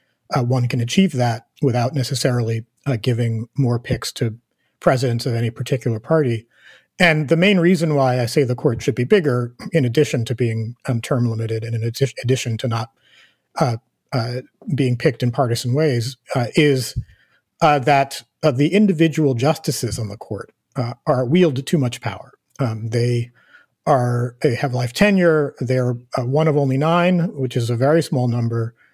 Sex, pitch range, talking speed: male, 120-150 Hz, 175 wpm